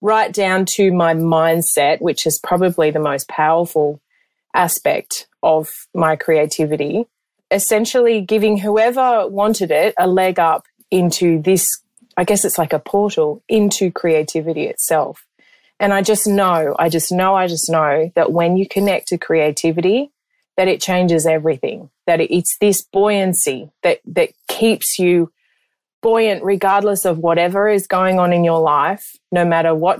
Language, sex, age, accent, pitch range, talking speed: English, female, 30-49, Australian, 170-225 Hz, 150 wpm